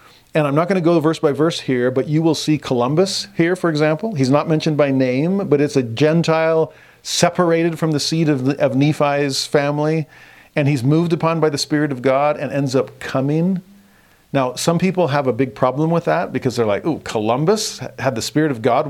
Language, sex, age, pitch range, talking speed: English, male, 40-59, 120-155 Hz, 215 wpm